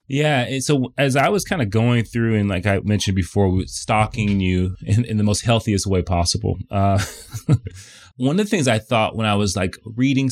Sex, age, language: male, 30-49, English